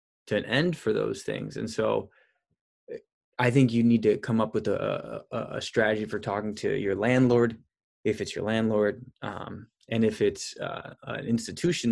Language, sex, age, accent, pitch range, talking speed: English, male, 20-39, American, 110-135 Hz, 175 wpm